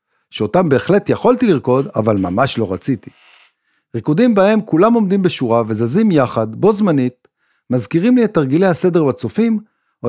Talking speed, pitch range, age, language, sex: 145 wpm, 125-185 Hz, 50-69, Hebrew, male